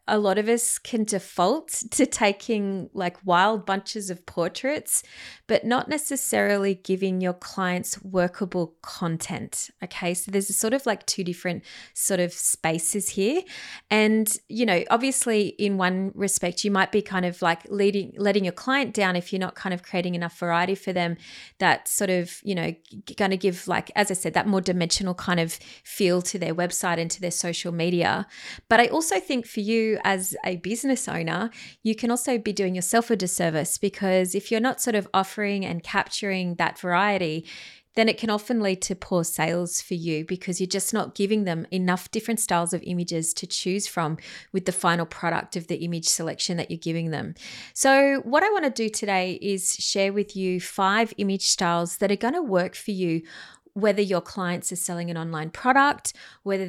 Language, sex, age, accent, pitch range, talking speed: English, female, 30-49, Australian, 175-215 Hz, 195 wpm